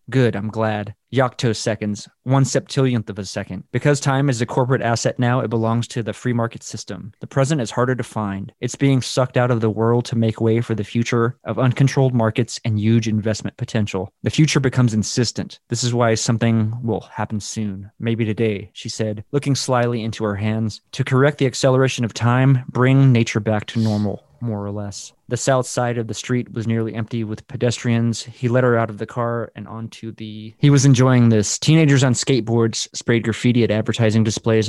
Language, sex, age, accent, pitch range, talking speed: English, male, 20-39, American, 110-125 Hz, 200 wpm